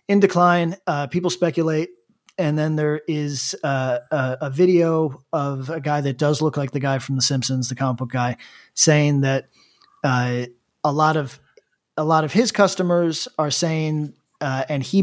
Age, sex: 40-59, male